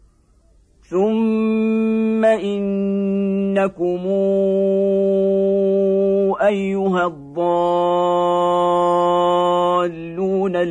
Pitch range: 165-190 Hz